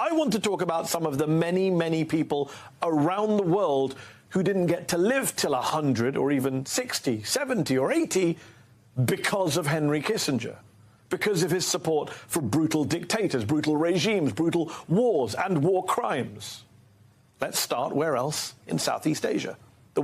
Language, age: English, 40-59